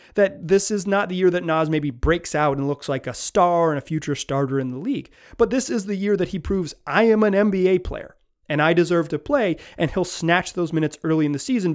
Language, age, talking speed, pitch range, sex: English, 30-49, 255 wpm, 145-190 Hz, male